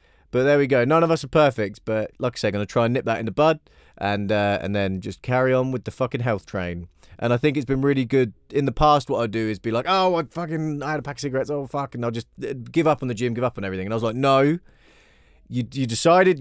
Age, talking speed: 20-39, 295 wpm